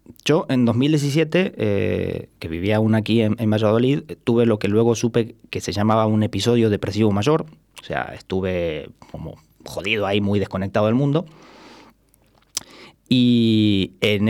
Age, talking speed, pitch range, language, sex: 30-49, 145 wpm, 105-125 Hz, Spanish, male